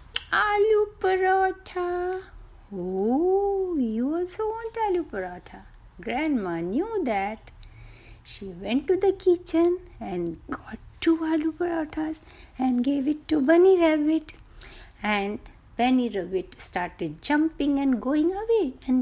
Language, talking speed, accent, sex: Hindi, 115 wpm, native, female